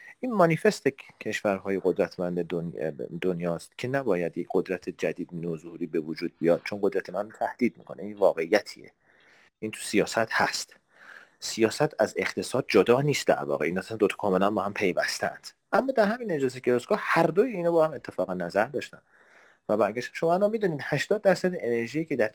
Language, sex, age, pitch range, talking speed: Persian, male, 30-49, 125-200 Hz, 170 wpm